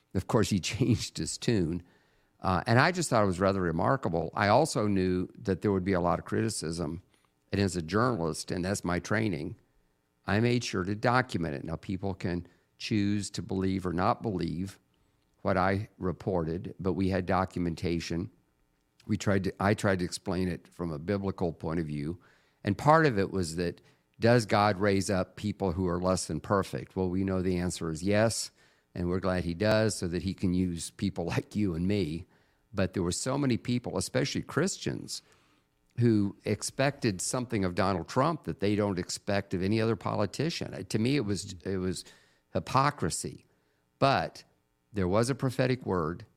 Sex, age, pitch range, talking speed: male, 50-69, 90-105 Hz, 185 wpm